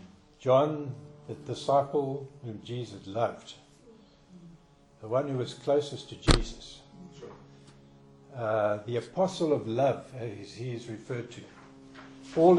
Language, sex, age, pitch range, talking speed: English, male, 60-79, 110-145 Hz, 115 wpm